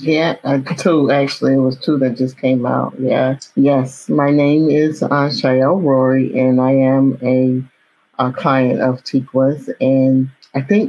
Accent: American